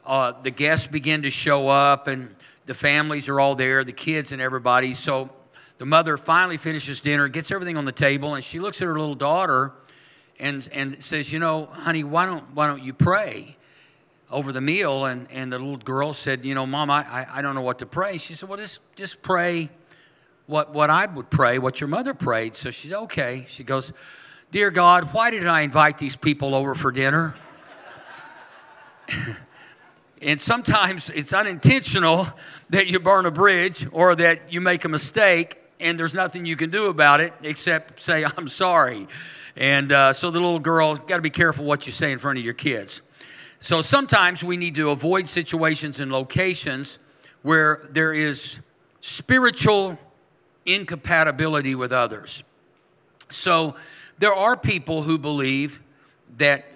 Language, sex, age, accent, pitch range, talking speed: English, male, 50-69, American, 140-170 Hz, 175 wpm